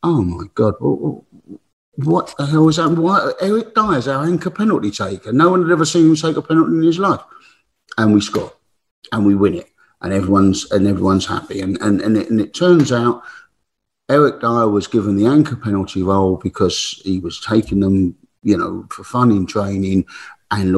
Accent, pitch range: British, 100-155 Hz